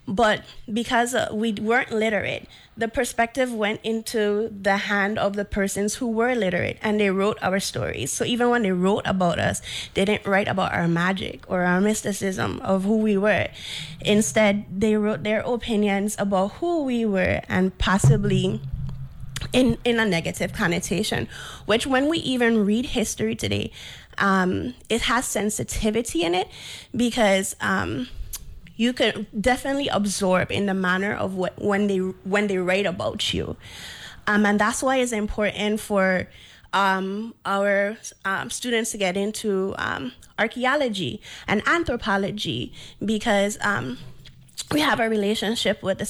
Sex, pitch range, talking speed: female, 190-220 Hz, 150 wpm